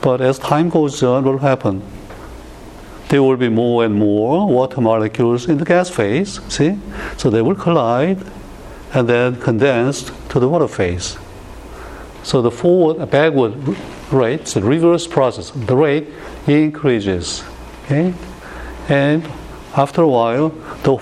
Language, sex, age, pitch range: Korean, male, 60-79, 110-145 Hz